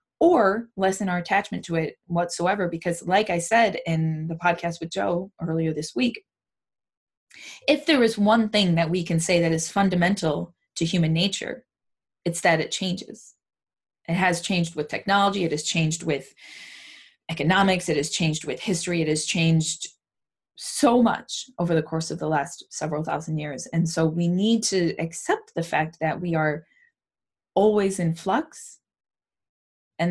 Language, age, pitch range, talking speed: English, 20-39, 160-190 Hz, 165 wpm